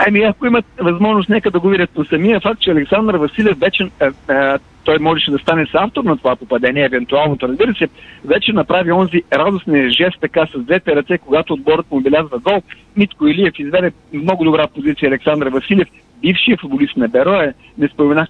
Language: Bulgarian